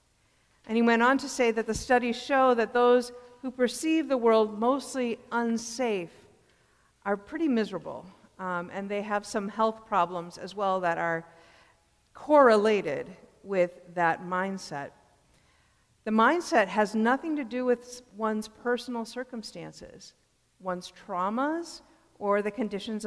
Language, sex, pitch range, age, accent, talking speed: English, female, 185-245 Hz, 50-69, American, 135 wpm